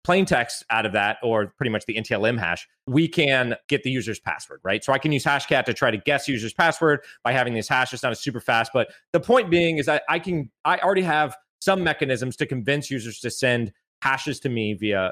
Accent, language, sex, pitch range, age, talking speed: American, English, male, 130-180 Hz, 30-49, 235 wpm